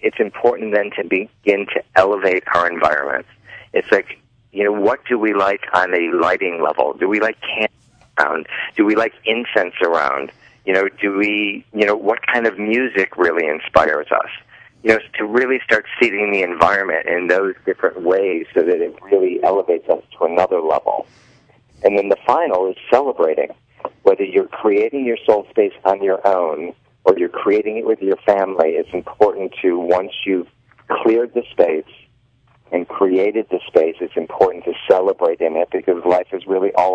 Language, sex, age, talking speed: English, male, 50-69, 180 wpm